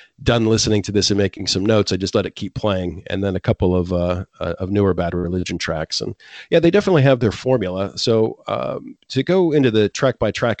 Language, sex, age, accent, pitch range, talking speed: English, male, 40-59, American, 95-120 Hz, 230 wpm